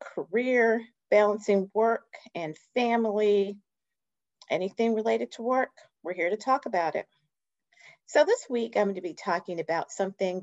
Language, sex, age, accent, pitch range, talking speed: English, female, 40-59, American, 170-235 Hz, 140 wpm